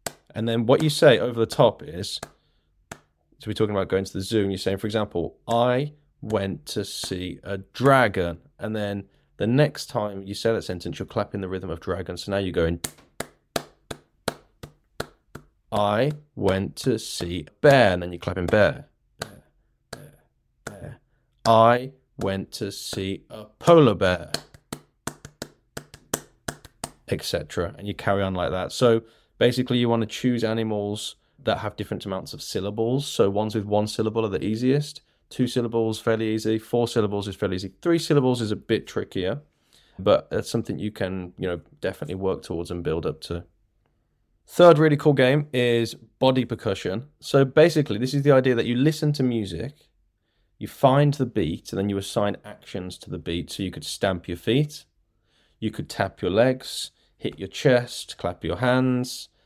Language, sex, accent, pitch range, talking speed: English, male, British, 95-125 Hz, 175 wpm